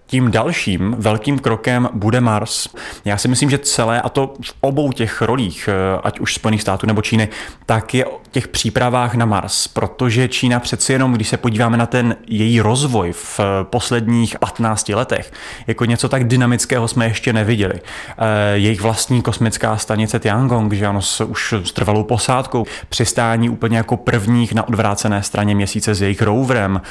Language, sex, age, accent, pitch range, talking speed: Czech, male, 20-39, native, 105-120 Hz, 165 wpm